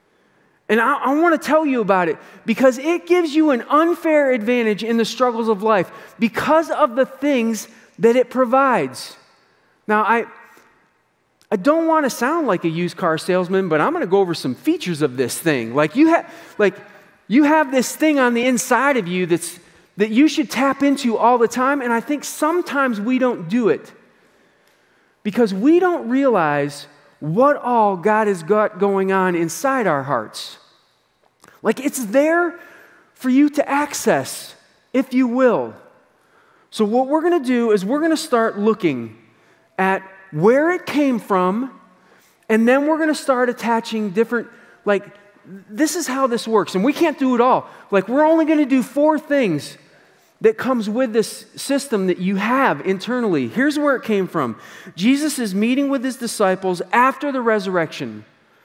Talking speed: 175 wpm